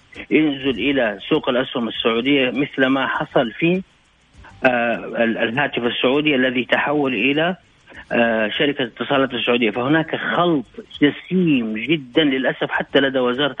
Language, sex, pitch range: Arabic, male, 125-160 Hz